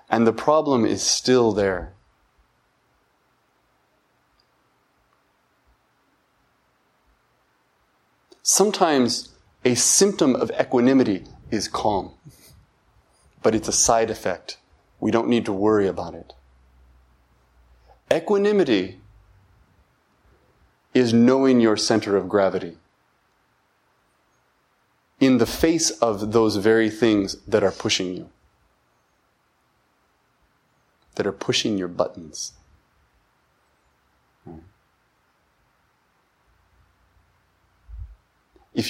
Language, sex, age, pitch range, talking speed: English, male, 30-49, 85-115 Hz, 75 wpm